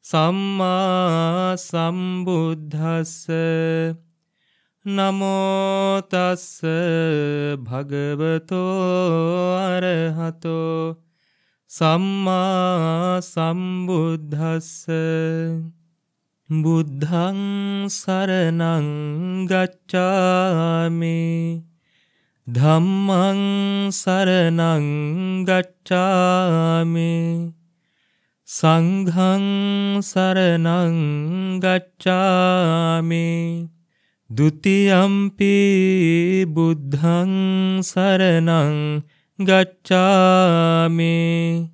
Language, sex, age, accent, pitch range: English, male, 20-39, Indian, 165-185 Hz